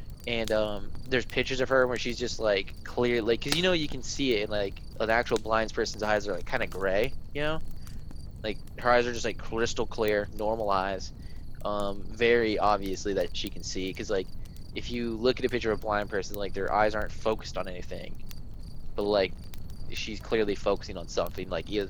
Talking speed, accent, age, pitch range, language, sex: 210 wpm, American, 20-39, 95-115 Hz, English, male